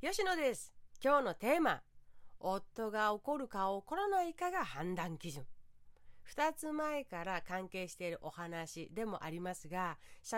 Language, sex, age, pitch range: Japanese, female, 40-59, 170-245 Hz